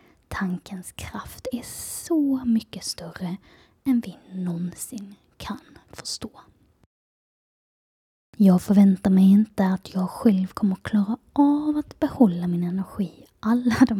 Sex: female